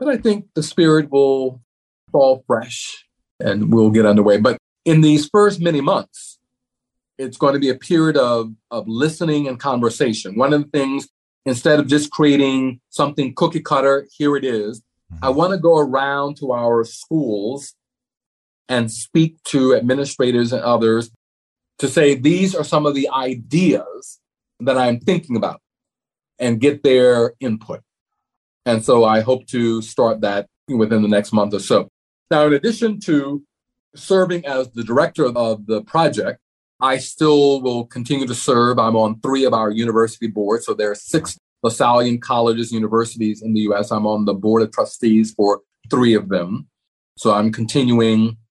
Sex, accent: male, American